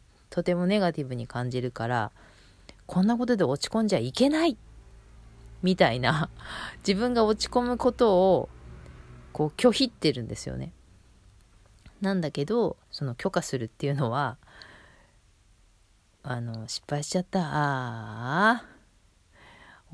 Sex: female